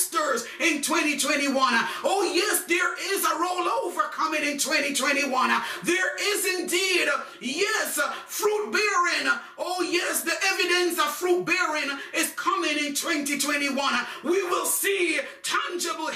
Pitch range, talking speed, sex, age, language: 300-355 Hz, 120 wpm, male, 40-59, English